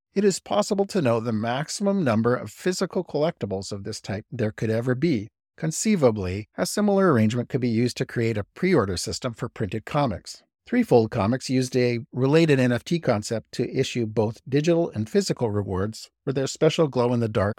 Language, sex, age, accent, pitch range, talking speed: English, male, 50-69, American, 105-140 Hz, 175 wpm